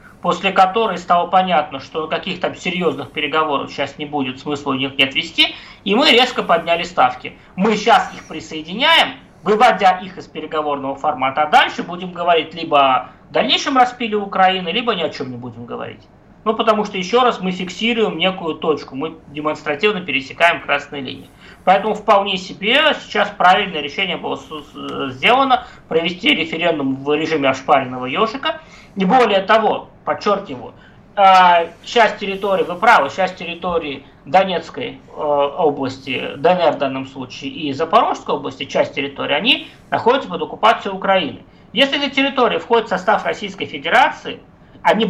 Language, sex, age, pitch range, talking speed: Russian, male, 20-39, 155-220 Hz, 145 wpm